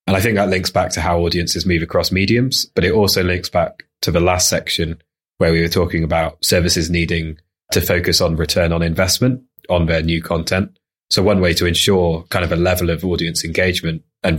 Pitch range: 80-95 Hz